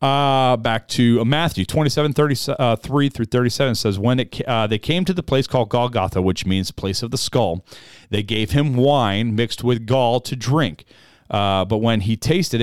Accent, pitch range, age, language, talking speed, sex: American, 95-130 Hz, 40-59, English, 200 wpm, male